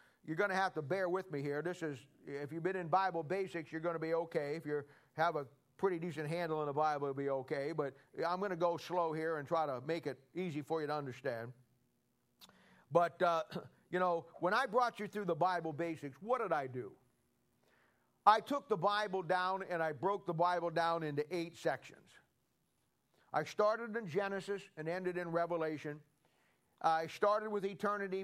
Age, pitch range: 50-69, 165-205 Hz